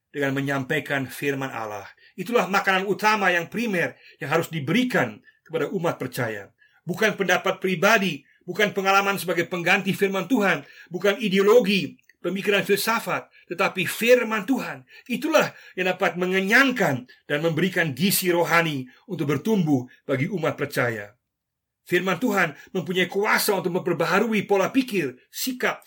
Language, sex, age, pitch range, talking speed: Indonesian, male, 50-69, 140-195 Hz, 125 wpm